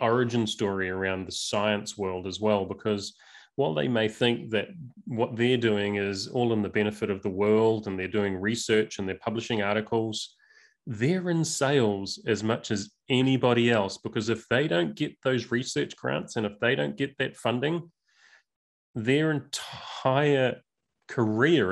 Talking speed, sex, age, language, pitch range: 165 wpm, male, 30-49, English, 110-150 Hz